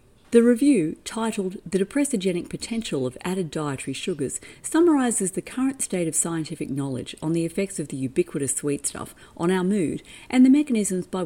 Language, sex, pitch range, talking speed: English, female, 145-225 Hz, 170 wpm